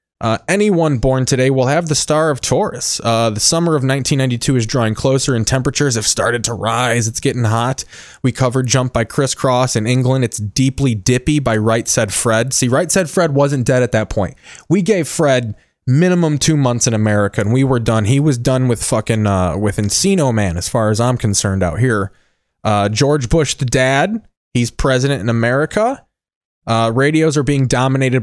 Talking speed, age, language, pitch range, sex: 195 wpm, 20-39, English, 110-140 Hz, male